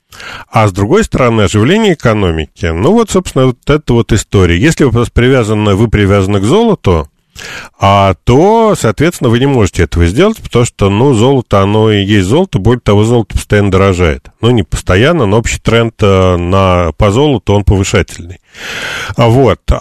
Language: Russian